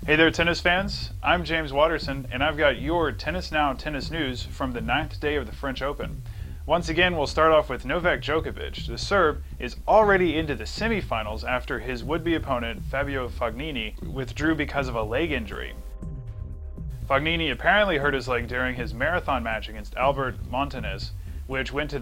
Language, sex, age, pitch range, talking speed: English, male, 30-49, 95-150 Hz, 180 wpm